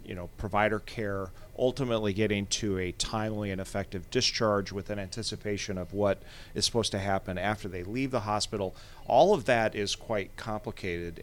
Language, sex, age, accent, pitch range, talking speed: English, male, 40-59, American, 100-120 Hz, 170 wpm